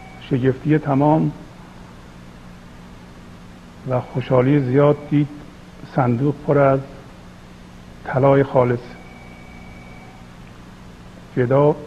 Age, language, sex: 50-69, Persian, male